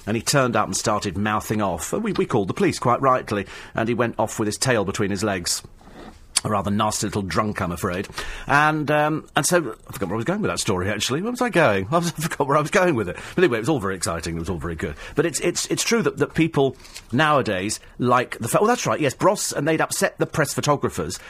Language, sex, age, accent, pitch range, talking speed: English, male, 40-59, British, 105-160 Hz, 260 wpm